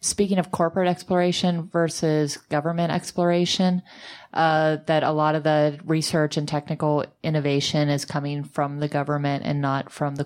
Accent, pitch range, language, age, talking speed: American, 140-170 Hz, English, 30-49, 150 wpm